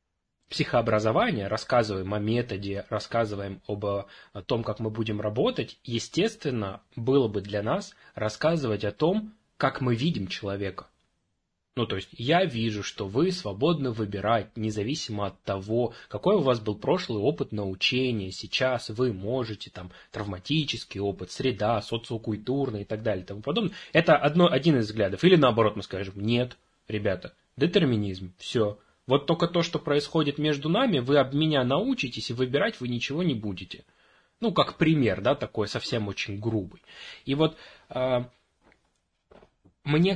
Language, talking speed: Russian, 145 wpm